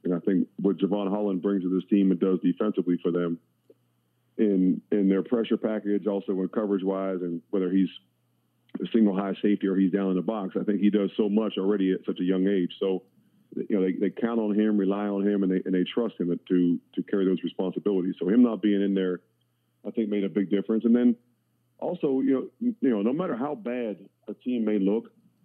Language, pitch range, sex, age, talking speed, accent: English, 95-105 Hz, male, 40-59, 230 wpm, American